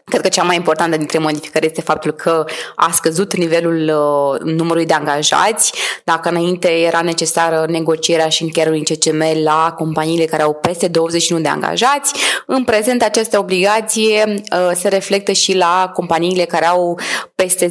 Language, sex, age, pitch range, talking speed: Romanian, female, 20-39, 170-225 Hz, 150 wpm